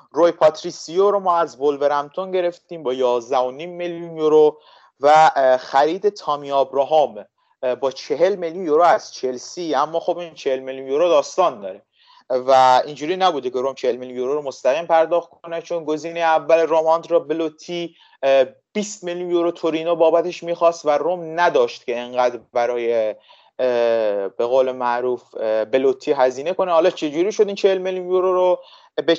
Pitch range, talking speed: 135-175 Hz, 150 wpm